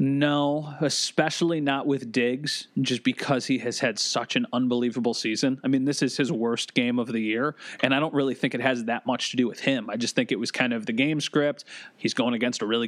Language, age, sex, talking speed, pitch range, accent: English, 30-49, male, 240 wpm, 120-160 Hz, American